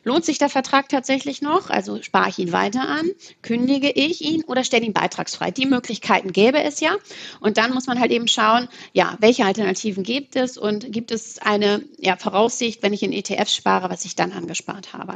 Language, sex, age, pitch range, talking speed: German, female, 30-49, 210-250 Hz, 205 wpm